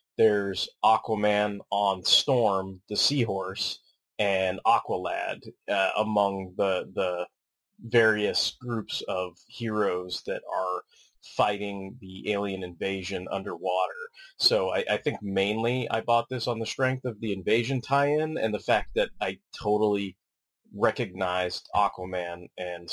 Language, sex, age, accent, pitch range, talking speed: English, male, 30-49, American, 90-115 Hz, 125 wpm